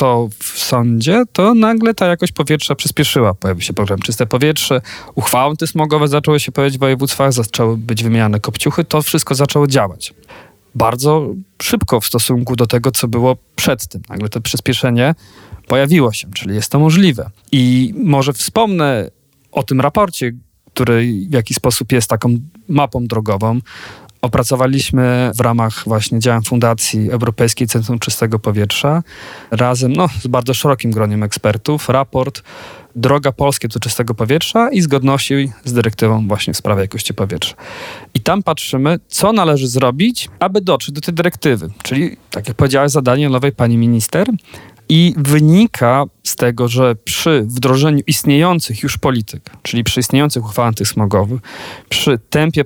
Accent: native